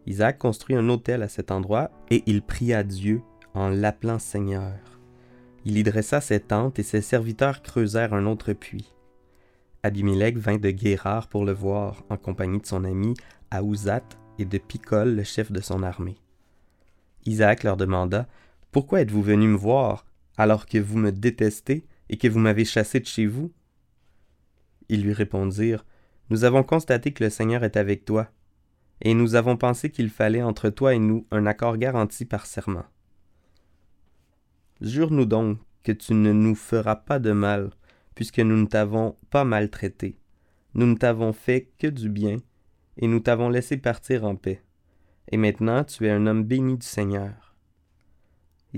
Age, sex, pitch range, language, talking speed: 20-39, male, 100-115 Hz, French, 165 wpm